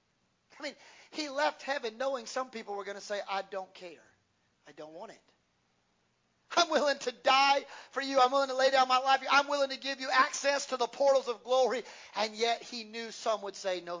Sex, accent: male, American